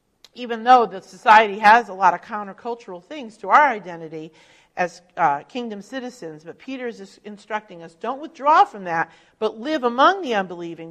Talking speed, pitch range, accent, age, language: 170 wpm, 175-235 Hz, American, 40-59, English